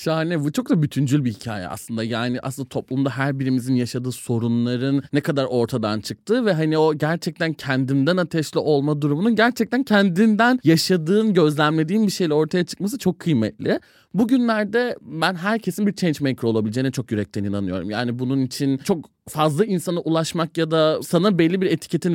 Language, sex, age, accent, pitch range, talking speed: Turkish, male, 30-49, native, 145-210 Hz, 165 wpm